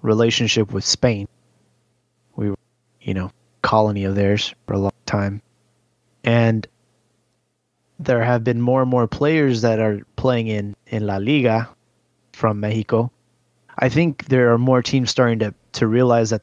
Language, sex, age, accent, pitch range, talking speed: English, male, 20-39, American, 110-125 Hz, 155 wpm